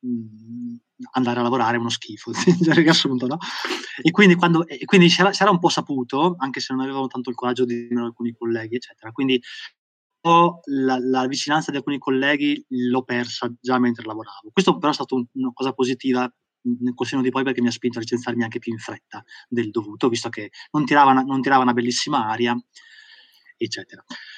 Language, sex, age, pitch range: Italian, male, 20-39, 120-155 Hz